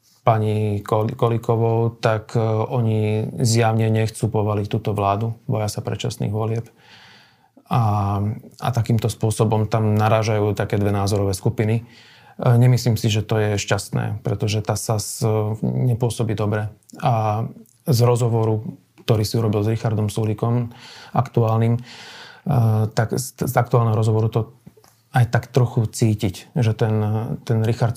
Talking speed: 125 wpm